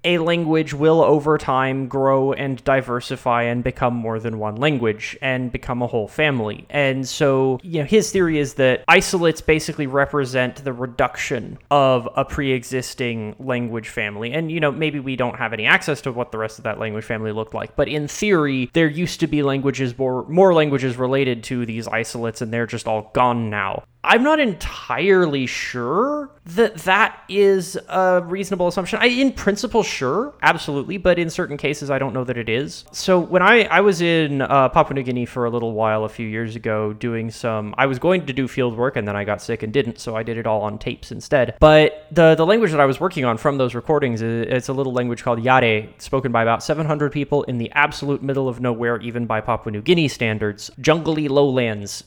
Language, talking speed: English, 210 wpm